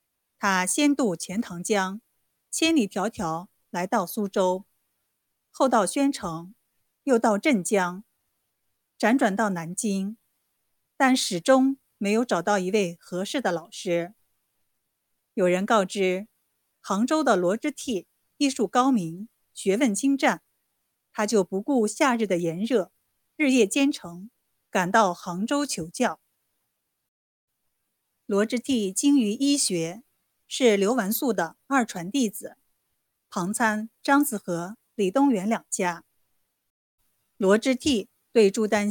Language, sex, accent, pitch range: Chinese, female, native, 185-245 Hz